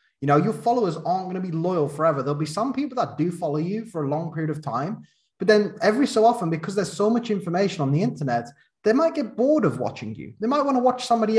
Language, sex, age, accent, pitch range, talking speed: English, male, 20-39, British, 145-195 Hz, 265 wpm